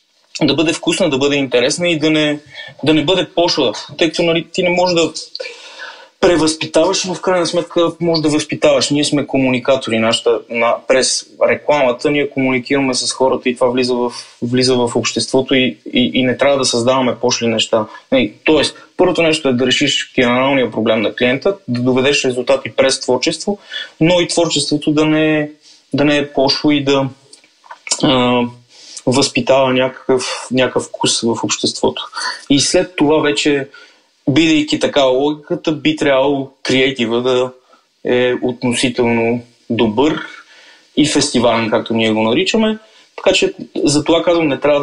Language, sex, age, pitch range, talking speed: Bulgarian, male, 20-39, 125-165 Hz, 150 wpm